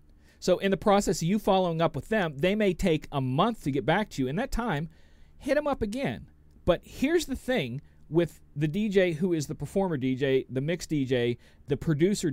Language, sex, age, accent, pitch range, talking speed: English, male, 40-59, American, 135-180 Hz, 215 wpm